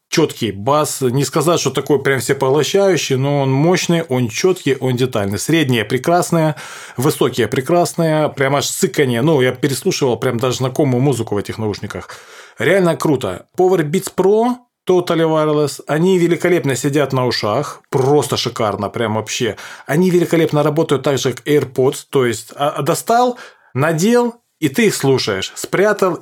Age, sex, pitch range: 20-39, male, 125-165 Hz